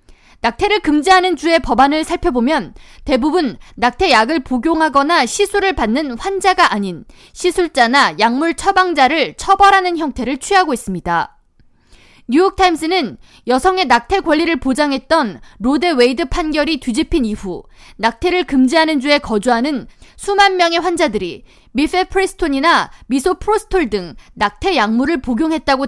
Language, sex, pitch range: Korean, female, 245-360 Hz